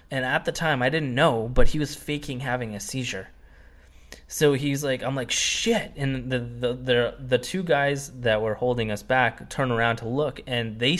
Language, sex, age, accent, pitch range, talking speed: English, male, 20-39, American, 110-135 Hz, 205 wpm